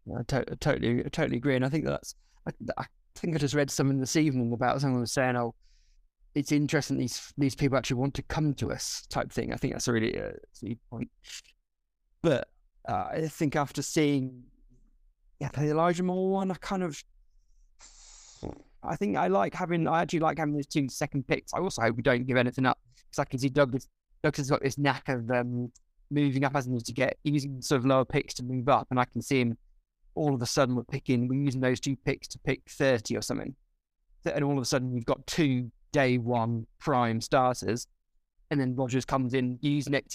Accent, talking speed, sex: British, 225 wpm, male